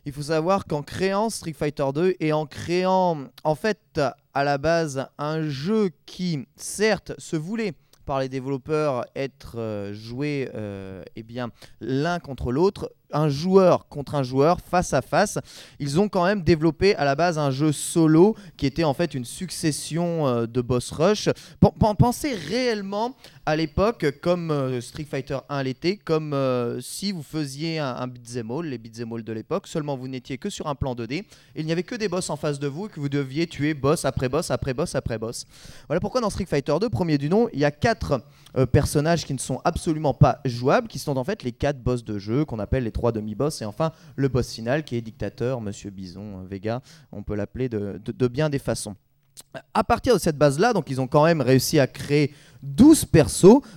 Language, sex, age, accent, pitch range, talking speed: French, male, 20-39, French, 130-165 Hz, 205 wpm